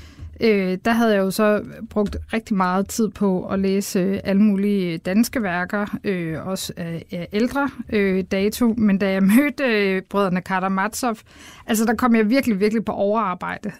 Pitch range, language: 195-230 Hz, Danish